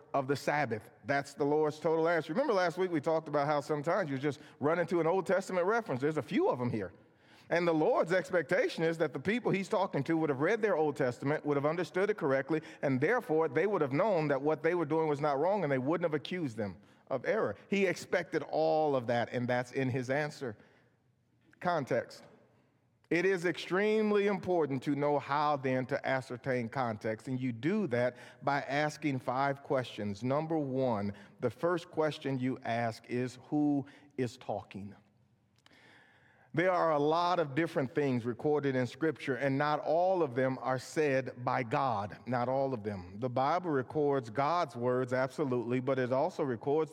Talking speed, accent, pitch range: 190 wpm, American, 130-165 Hz